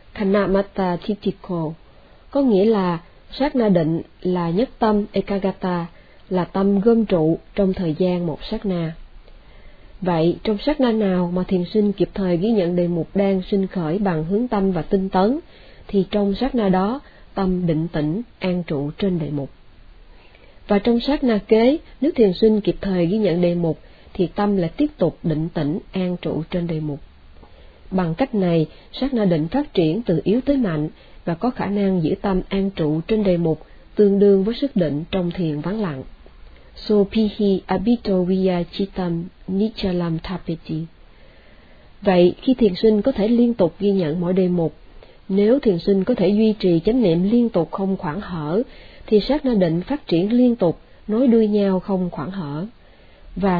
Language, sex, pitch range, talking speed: Vietnamese, female, 170-210 Hz, 175 wpm